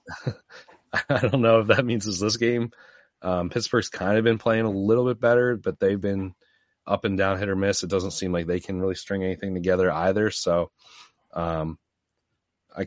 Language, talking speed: English, 195 wpm